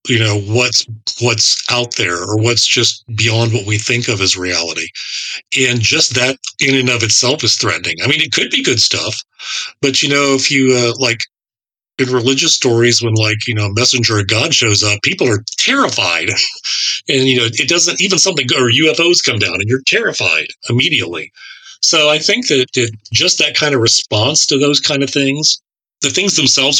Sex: male